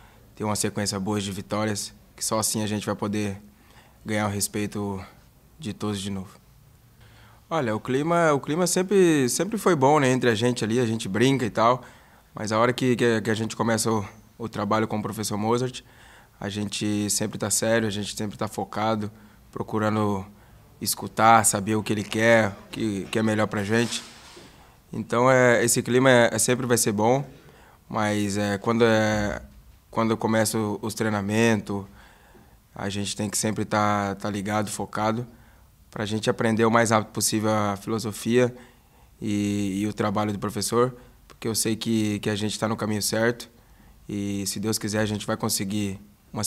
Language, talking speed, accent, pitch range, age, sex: Portuguese, 185 wpm, Brazilian, 105-115 Hz, 20-39, male